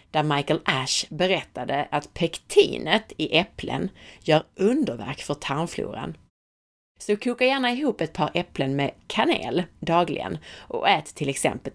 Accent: native